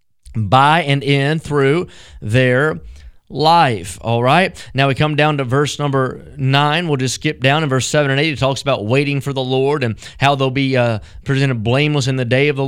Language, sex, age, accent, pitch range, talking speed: English, male, 30-49, American, 130-160 Hz, 210 wpm